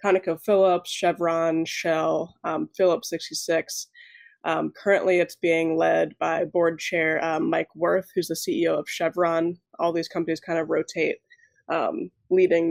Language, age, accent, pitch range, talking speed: English, 20-39, American, 165-195 Hz, 140 wpm